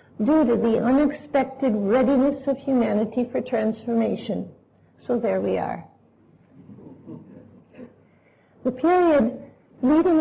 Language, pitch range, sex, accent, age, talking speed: English, 225-270 Hz, female, American, 50-69, 95 wpm